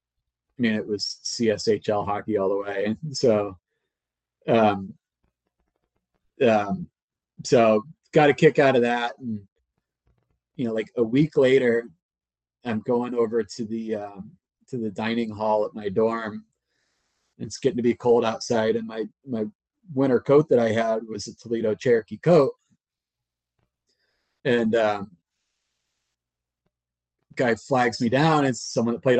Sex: male